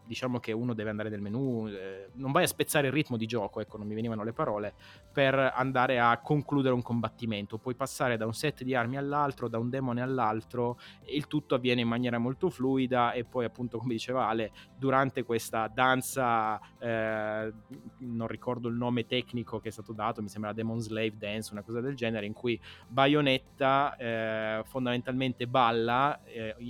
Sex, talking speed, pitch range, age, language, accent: male, 185 wpm, 110-135 Hz, 20-39, Italian, native